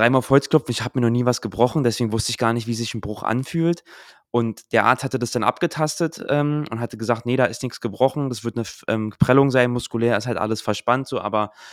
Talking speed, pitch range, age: 250 wpm, 115-140 Hz, 20-39